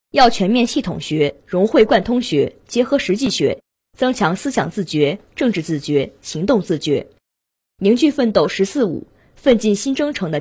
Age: 20-39